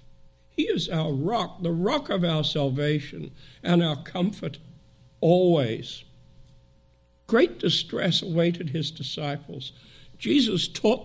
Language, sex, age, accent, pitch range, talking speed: English, male, 60-79, American, 130-175 Hz, 110 wpm